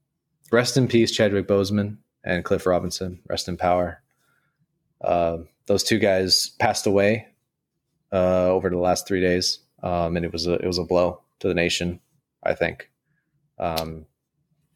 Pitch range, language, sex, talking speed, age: 90-125 Hz, English, male, 145 wpm, 20-39